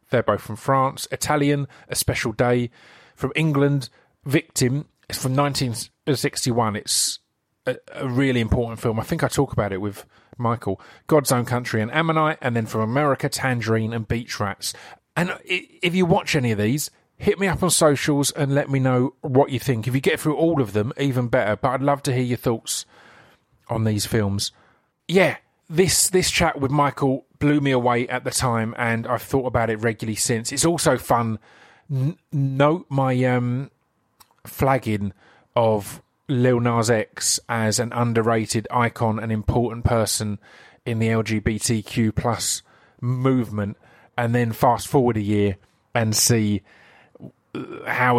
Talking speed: 165 wpm